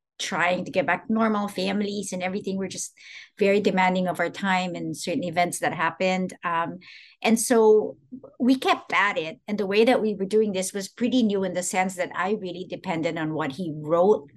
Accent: Filipino